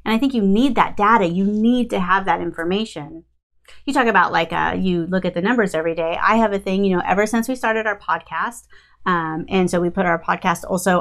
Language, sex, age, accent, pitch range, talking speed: English, female, 30-49, American, 170-220 Hz, 245 wpm